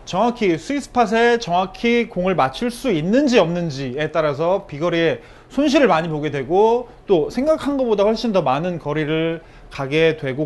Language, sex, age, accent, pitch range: Korean, male, 30-49, native, 160-235 Hz